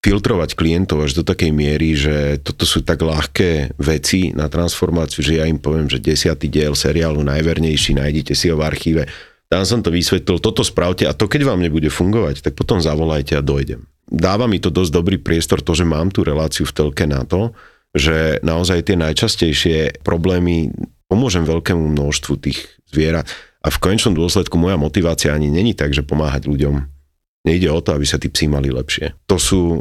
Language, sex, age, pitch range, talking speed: Slovak, male, 40-59, 75-90 Hz, 185 wpm